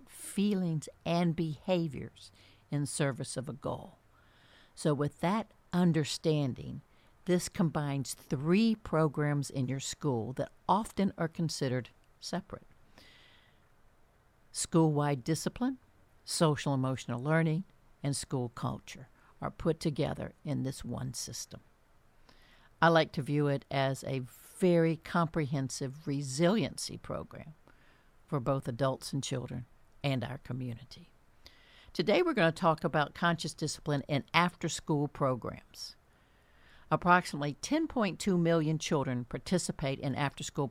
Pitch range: 130-165 Hz